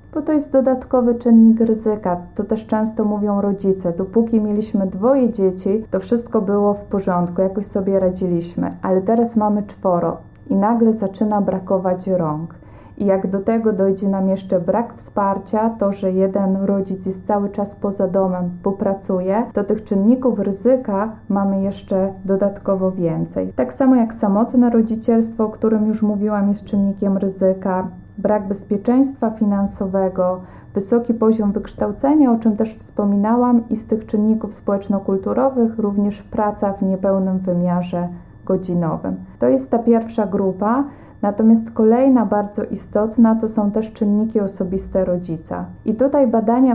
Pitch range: 195-225 Hz